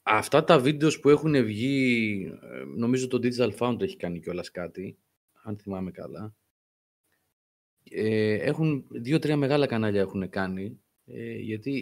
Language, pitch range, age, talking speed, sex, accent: Greek, 100-135 Hz, 30-49, 115 wpm, male, native